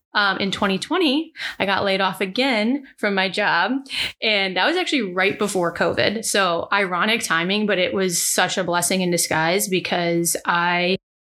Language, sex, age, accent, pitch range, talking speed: English, female, 20-39, American, 180-205 Hz, 165 wpm